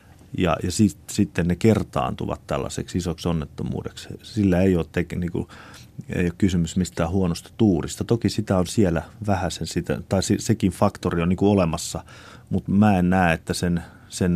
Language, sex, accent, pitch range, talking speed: Finnish, male, native, 85-110 Hz, 165 wpm